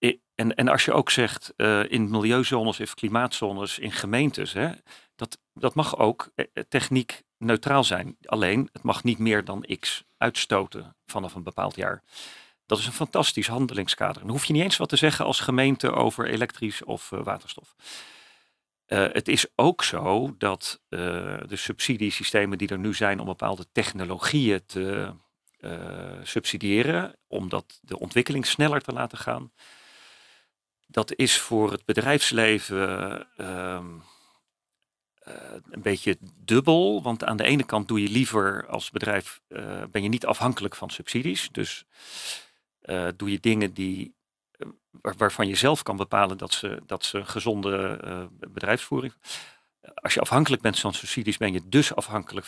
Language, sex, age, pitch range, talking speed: Dutch, male, 40-59, 95-125 Hz, 155 wpm